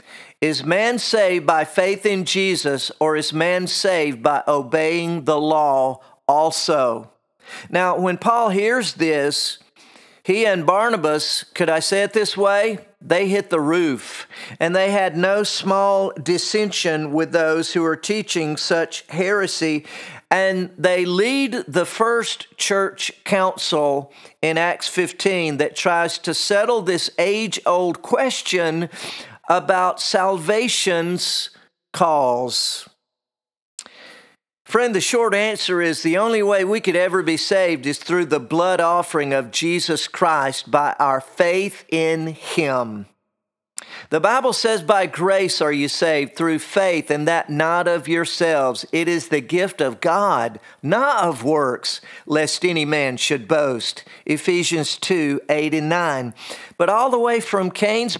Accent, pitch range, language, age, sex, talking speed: American, 160-200 Hz, English, 50-69, male, 135 wpm